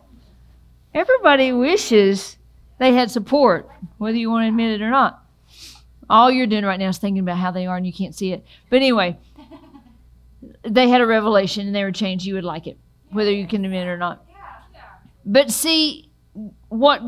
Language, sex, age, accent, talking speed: English, female, 50-69, American, 185 wpm